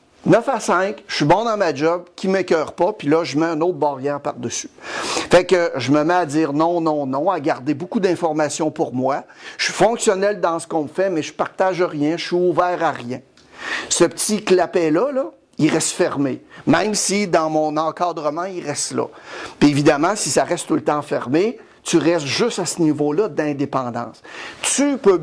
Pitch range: 150-185 Hz